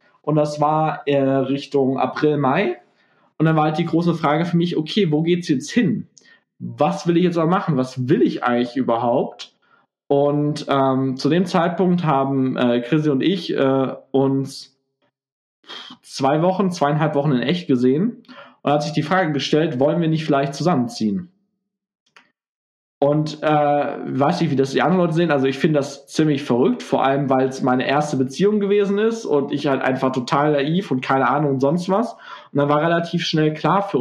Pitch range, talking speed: 135-170 Hz, 185 wpm